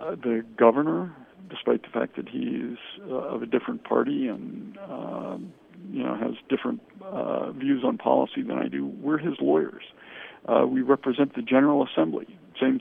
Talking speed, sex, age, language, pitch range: 170 wpm, male, 50-69, English, 115-145 Hz